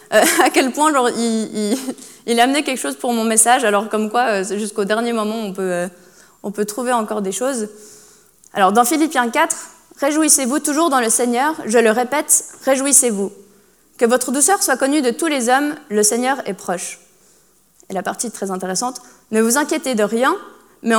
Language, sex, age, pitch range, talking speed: French, female, 20-39, 220-285 Hz, 195 wpm